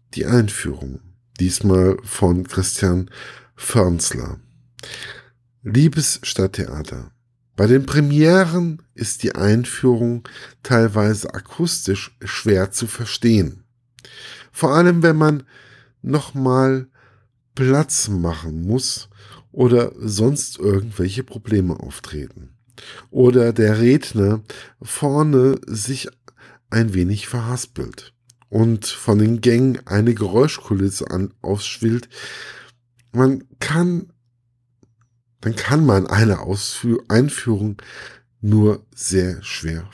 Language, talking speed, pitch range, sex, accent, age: German, 90 wpm, 100-125 Hz, male, German, 50-69